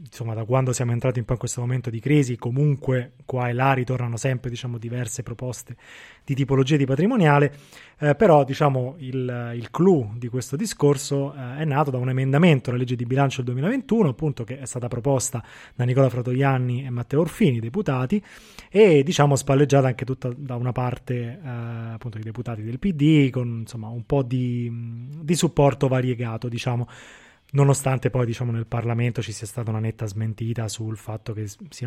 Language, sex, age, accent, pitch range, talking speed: Italian, male, 20-39, native, 120-145 Hz, 175 wpm